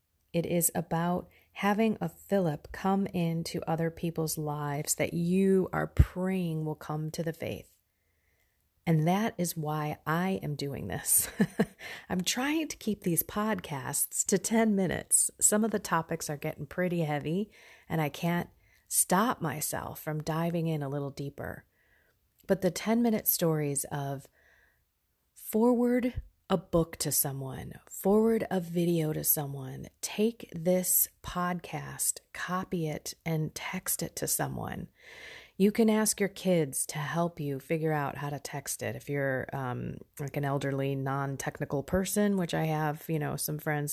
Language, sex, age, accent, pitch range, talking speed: English, female, 30-49, American, 145-185 Hz, 150 wpm